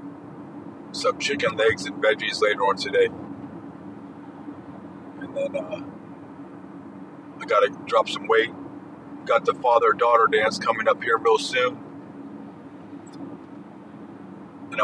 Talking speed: 110 wpm